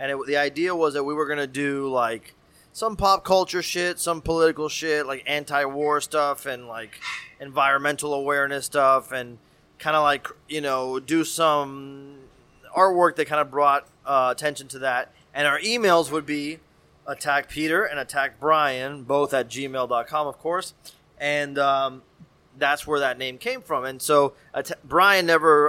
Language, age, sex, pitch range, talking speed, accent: English, 30-49, male, 130-155 Hz, 170 wpm, American